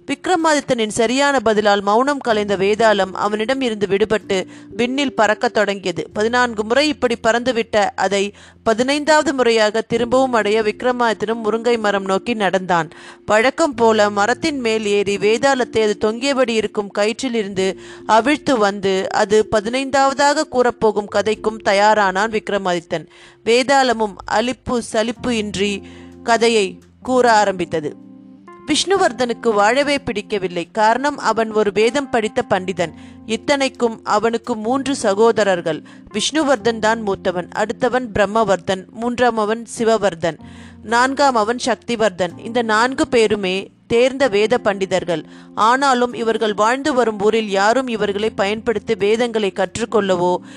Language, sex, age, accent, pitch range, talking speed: Tamil, female, 30-49, native, 200-245 Hz, 105 wpm